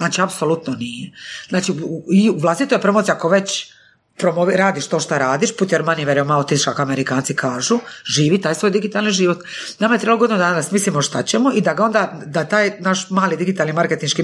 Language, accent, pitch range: Croatian, native, 150-200 Hz